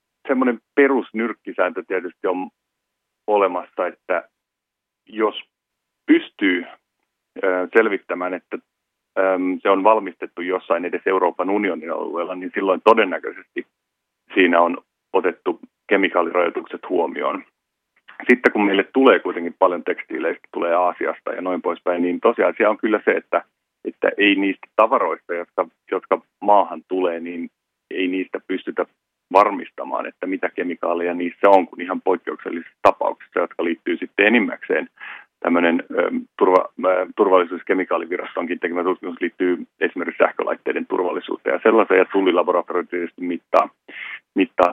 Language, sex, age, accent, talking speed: Finnish, male, 40-59, native, 115 wpm